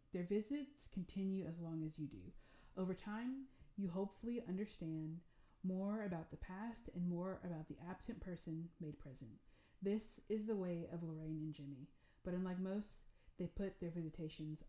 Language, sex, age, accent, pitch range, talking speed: English, female, 30-49, American, 160-190 Hz, 165 wpm